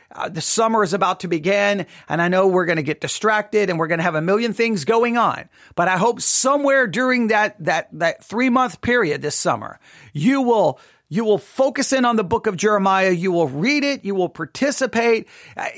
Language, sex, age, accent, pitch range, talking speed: English, male, 40-59, American, 180-235 Hz, 215 wpm